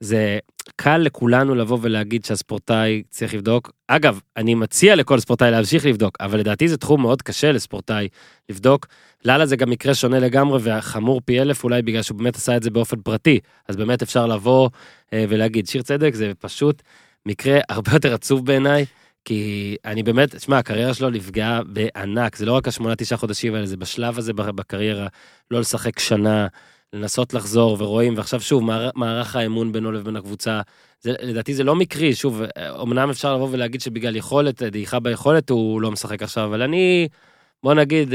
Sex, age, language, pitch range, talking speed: male, 20-39, Hebrew, 110-135 Hz, 170 wpm